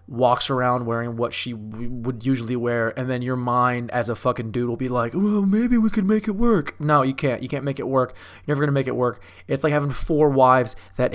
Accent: American